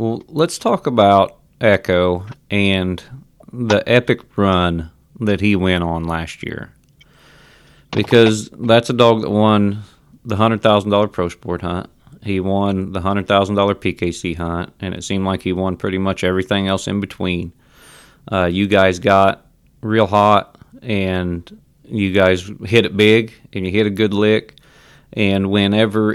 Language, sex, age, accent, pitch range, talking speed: English, male, 30-49, American, 95-115 Hz, 145 wpm